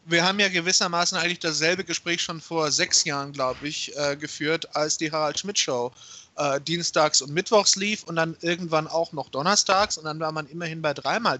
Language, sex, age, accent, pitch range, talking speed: German, male, 30-49, German, 155-180 Hz, 190 wpm